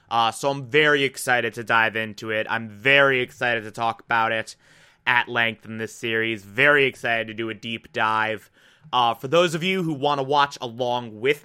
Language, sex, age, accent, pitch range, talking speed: English, male, 20-39, American, 125-180 Hz, 205 wpm